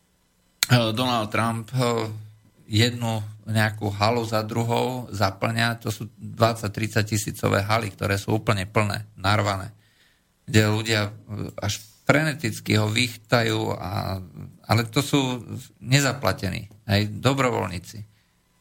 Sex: male